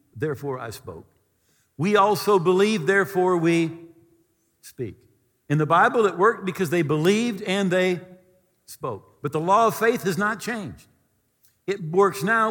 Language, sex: English, male